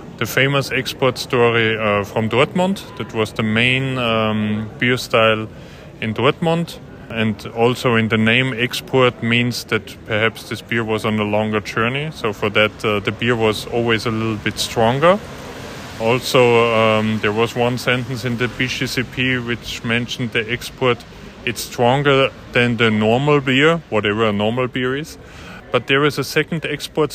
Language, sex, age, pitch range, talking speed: Dutch, male, 30-49, 110-135 Hz, 165 wpm